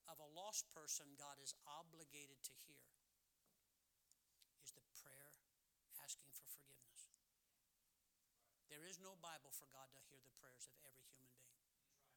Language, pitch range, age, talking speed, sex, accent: English, 135-160 Hz, 60-79, 145 wpm, male, American